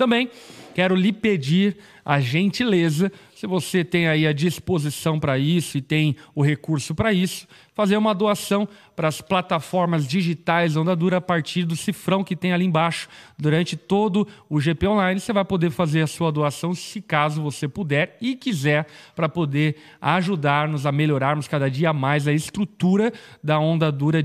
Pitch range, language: 155-195 Hz, Portuguese